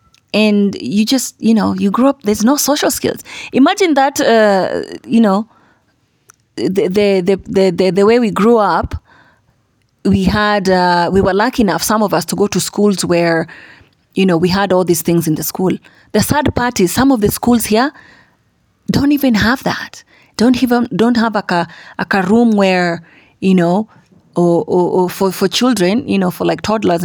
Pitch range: 180-235 Hz